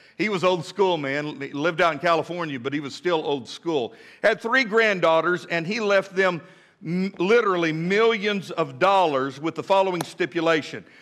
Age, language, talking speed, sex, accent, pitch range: 50-69, English, 165 wpm, male, American, 165-210 Hz